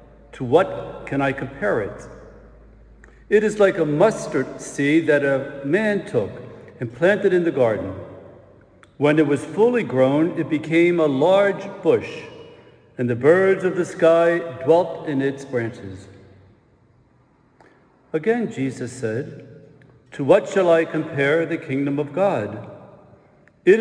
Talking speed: 135 wpm